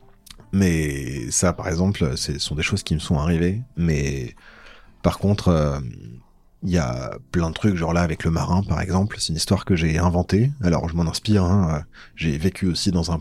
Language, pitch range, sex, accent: French, 80-100 Hz, male, French